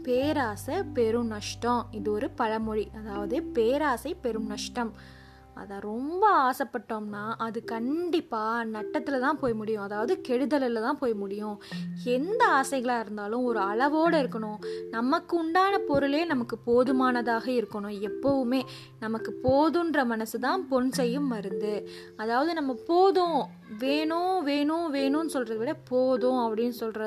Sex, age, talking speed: female, 20-39, 115 wpm